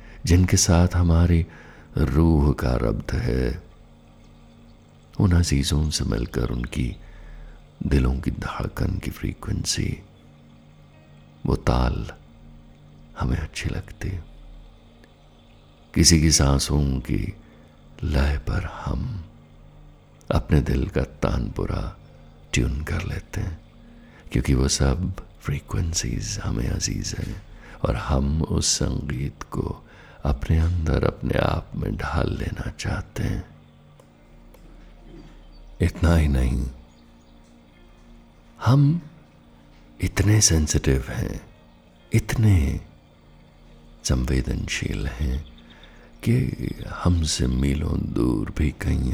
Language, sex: Hindi, male